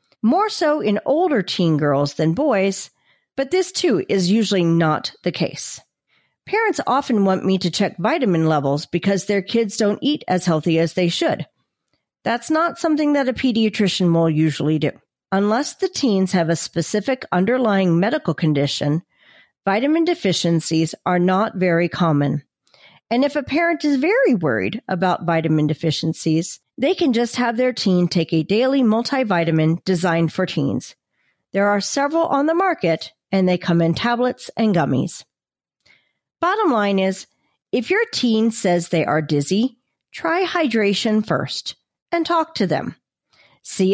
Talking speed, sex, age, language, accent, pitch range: 155 wpm, female, 40-59, English, American, 165-255 Hz